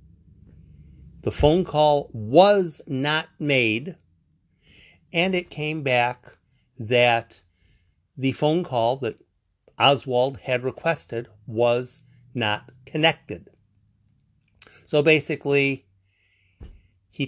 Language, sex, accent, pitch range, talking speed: English, male, American, 110-155 Hz, 85 wpm